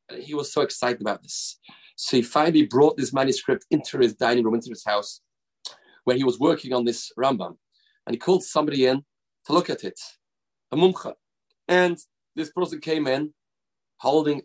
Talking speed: 180 wpm